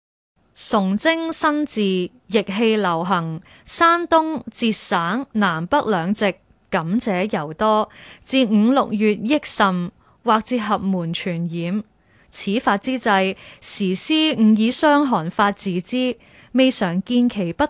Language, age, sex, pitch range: Chinese, 20-39, female, 185-260 Hz